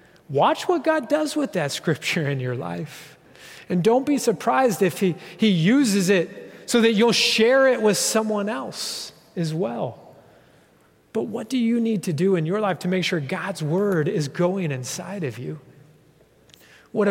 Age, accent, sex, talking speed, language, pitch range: 30-49, American, male, 175 wpm, English, 175-230 Hz